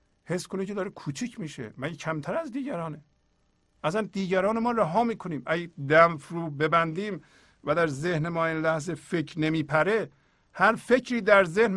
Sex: male